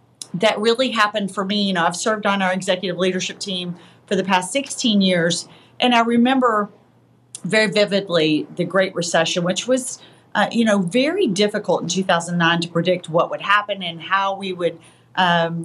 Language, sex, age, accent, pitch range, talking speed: English, female, 40-59, American, 170-205 Hz, 175 wpm